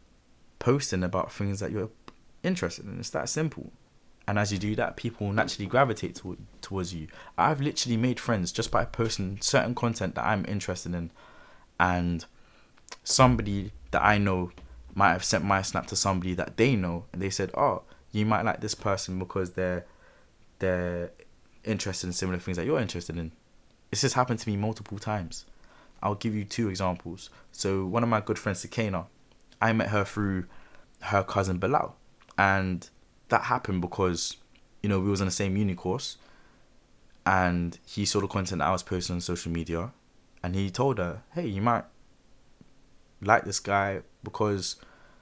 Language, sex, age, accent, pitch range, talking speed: English, male, 20-39, British, 90-110 Hz, 175 wpm